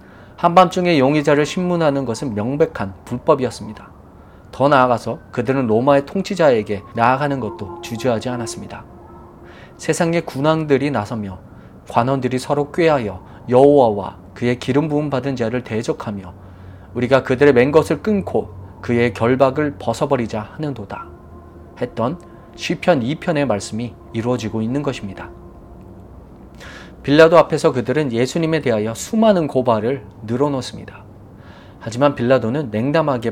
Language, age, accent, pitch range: Korean, 30-49, native, 105-145 Hz